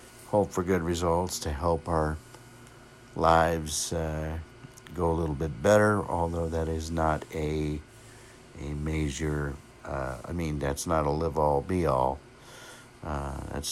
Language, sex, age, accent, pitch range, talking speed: English, male, 60-79, American, 80-115 Hz, 145 wpm